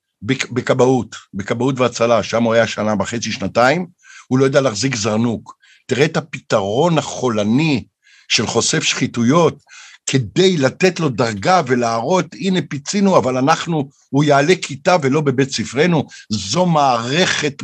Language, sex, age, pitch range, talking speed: Hebrew, male, 60-79, 130-185 Hz, 130 wpm